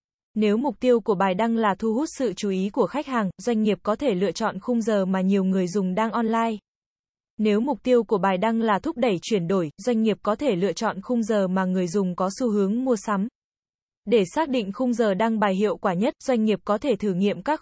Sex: female